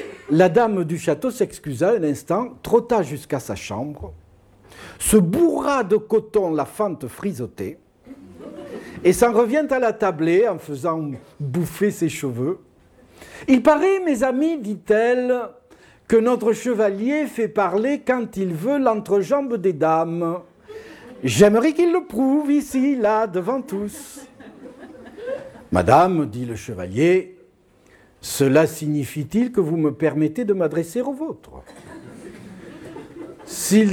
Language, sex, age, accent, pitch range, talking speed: French, male, 60-79, French, 160-235 Hz, 125 wpm